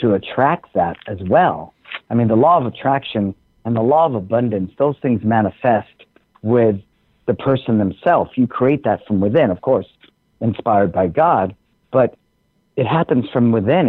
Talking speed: 165 wpm